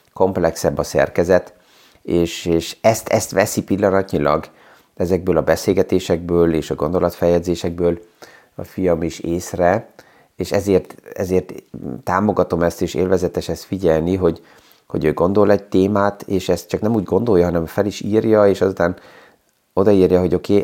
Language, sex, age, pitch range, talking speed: Hungarian, male, 30-49, 85-100 Hz, 140 wpm